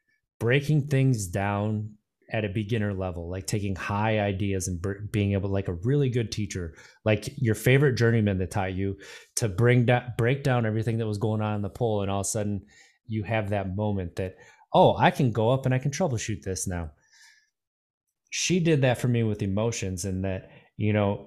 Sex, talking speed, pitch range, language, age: male, 195 wpm, 100-125 Hz, English, 20-39